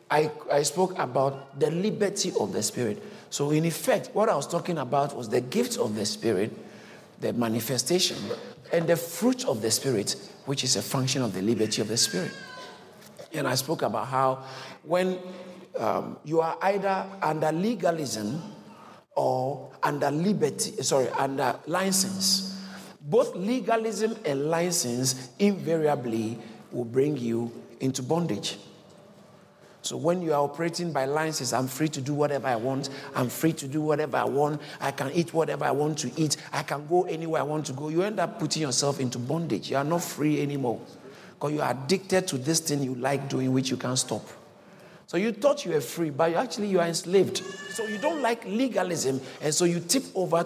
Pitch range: 135-180 Hz